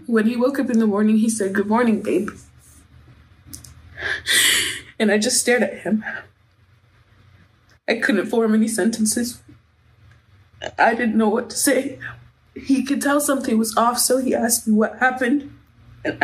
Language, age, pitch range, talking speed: English, 20-39, 230-295 Hz, 155 wpm